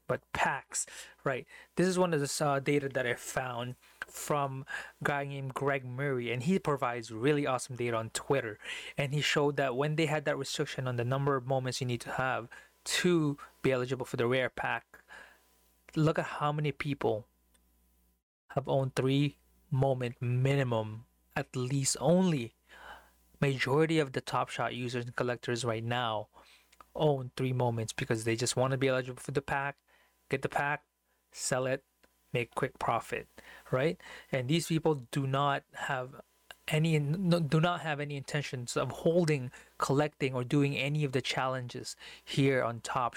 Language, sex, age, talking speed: English, male, 20-39, 165 wpm